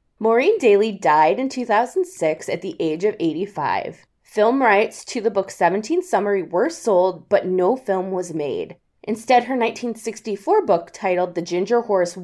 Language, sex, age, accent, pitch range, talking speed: English, female, 20-39, American, 175-250 Hz, 155 wpm